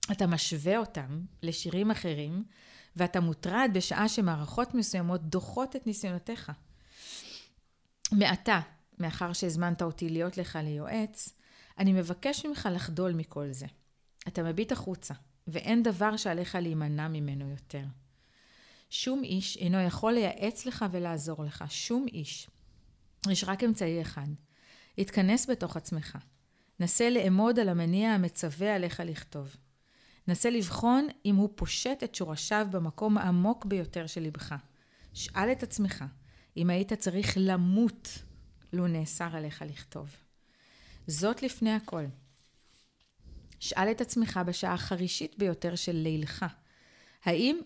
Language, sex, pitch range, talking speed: Hebrew, female, 155-210 Hz, 120 wpm